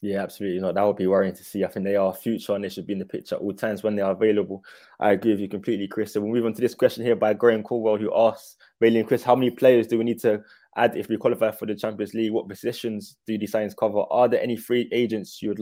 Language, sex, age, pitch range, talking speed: English, male, 20-39, 100-115 Hz, 295 wpm